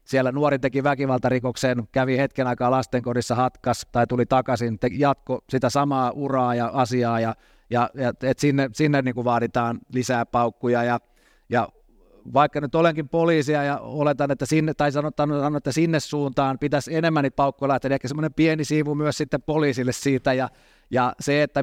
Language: Finnish